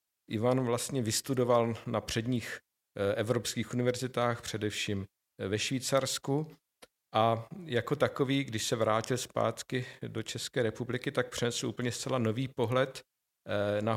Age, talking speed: 50-69, 115 wpm